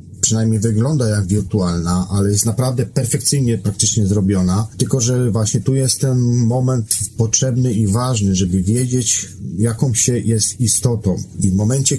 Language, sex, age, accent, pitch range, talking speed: Polish, male, 40-59, native, 105-130 Hz, 145 wpm